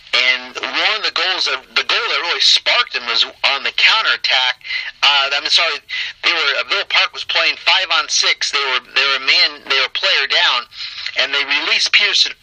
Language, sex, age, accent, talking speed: English, male, 40-59, American, 200 wpm